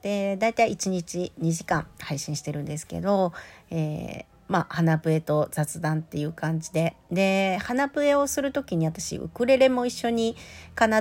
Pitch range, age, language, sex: 160-220 Hz, 50-69, Japanese, female